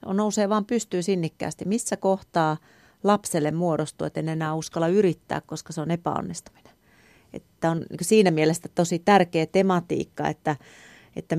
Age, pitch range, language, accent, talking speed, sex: 30-49, 155-180 Hz, Finnish, native, 135 wpm, female